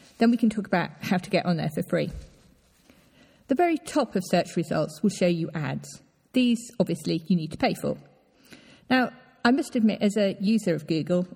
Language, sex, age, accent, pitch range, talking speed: English, female, 50-69, British, 170-225 Hz, 200 wpm